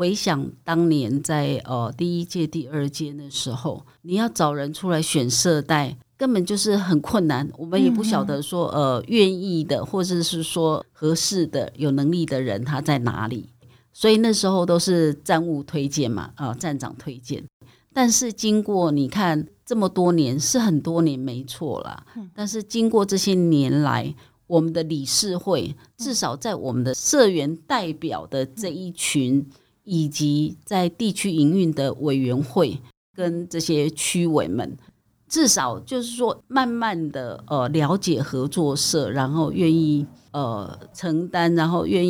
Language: Chinese